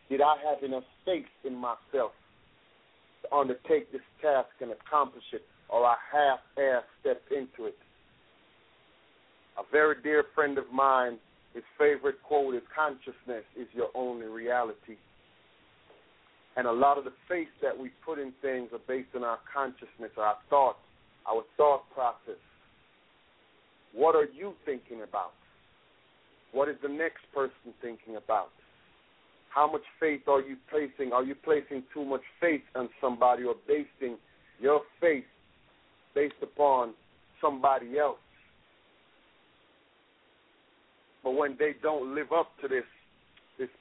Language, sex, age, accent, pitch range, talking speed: English, male, 40-59, American, 125-155 Hz, 135 wpm